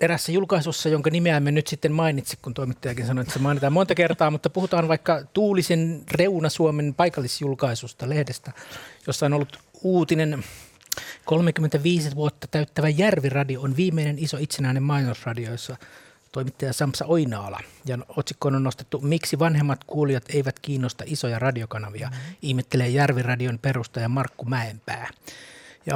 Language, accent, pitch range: Finnish, native, 130-160 Hz